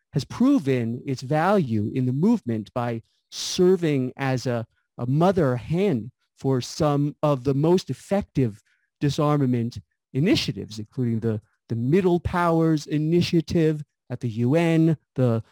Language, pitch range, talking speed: English, 125-170 Hz, 125 wpm